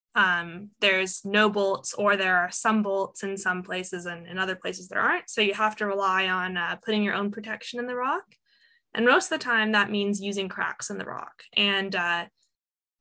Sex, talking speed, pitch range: female, 210 wpm, 190-225 Hz